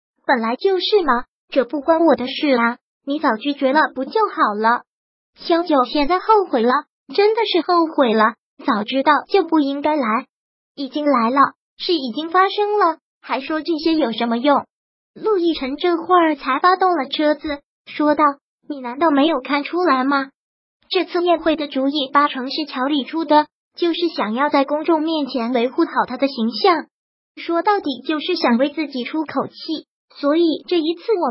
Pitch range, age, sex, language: 265-335 Hz, 20-39, male, Chinese